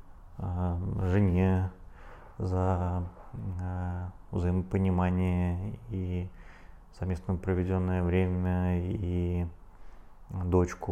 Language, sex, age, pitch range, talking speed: Russian, male, 20-39, 90-100 Hz, 55 wpm